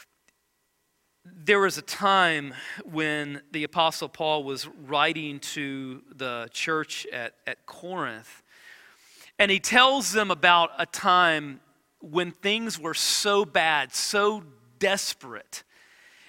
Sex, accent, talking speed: male, American, 110 wpm